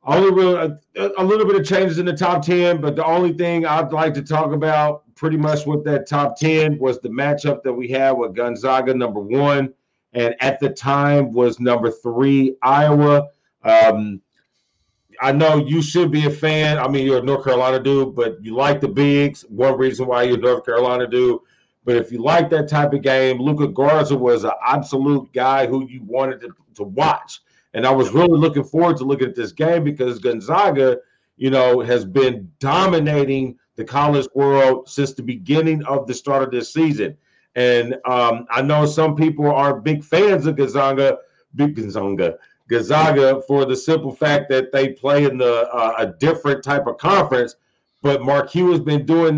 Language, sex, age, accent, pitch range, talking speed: English, male, 40-59, American, 130-155 Hz, 185 wpm